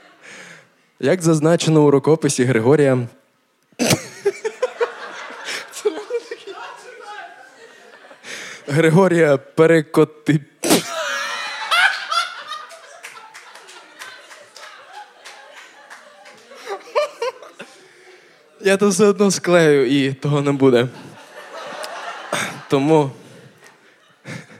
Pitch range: 145-215 Hz